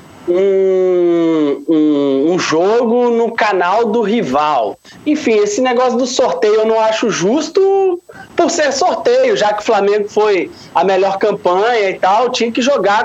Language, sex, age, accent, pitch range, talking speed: Portuguese, male, 20-39, Brazilian, 190-275 Hz, 150 wpm